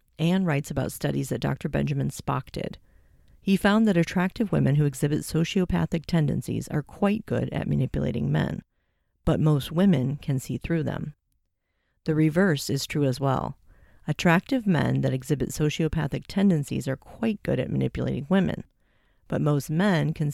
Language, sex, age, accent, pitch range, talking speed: English, female, 40-59, American, 135-180 Hz, 155 wpm